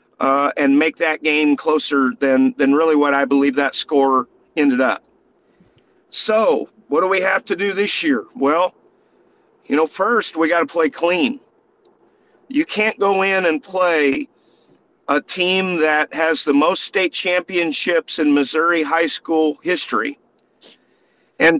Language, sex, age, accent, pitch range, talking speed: English, male, 50-69, American, 155-250 Hz, 150 wpm